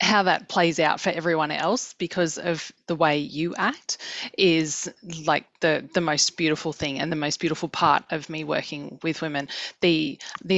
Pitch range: 155-190 Hz